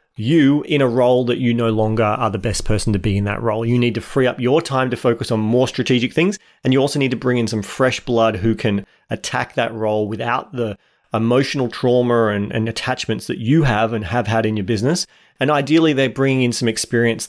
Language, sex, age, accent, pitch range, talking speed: English, male, 30-49, Australian, 115-140 Hz, 235 wpm